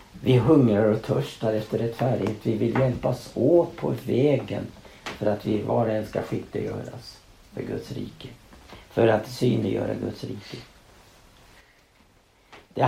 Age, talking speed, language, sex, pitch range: 60-79, 140 wpm, Swedish, male, 110-135 Hz